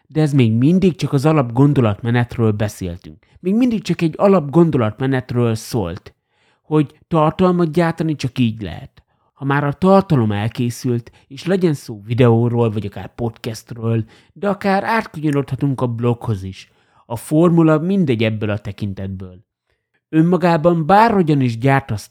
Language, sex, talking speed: Hungarian, male, 135 wpm